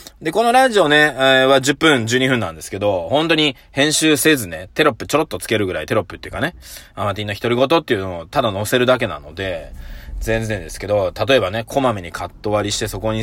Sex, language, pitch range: male, Japanese, 100-150 Hz